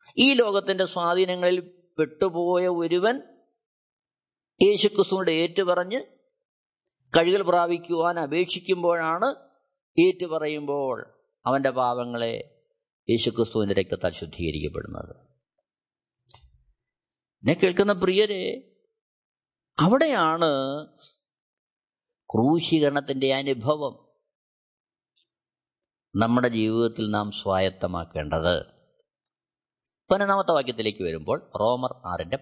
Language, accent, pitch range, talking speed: Malayalam, native, 125-175 Hz, 55 wpm